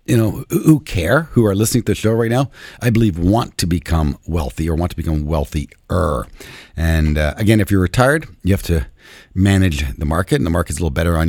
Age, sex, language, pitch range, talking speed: 50-69, male, English, 75-110 Hz, 225 wpm